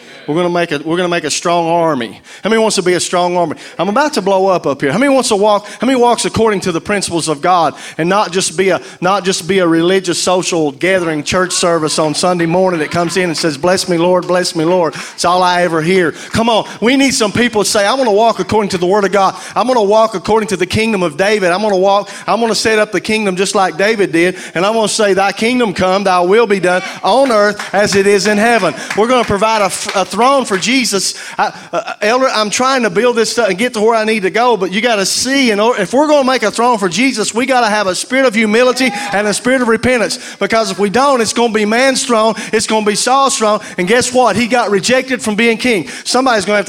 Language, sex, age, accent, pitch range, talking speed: English, male, 40-59, American, 185-235 Hz, 270 wpm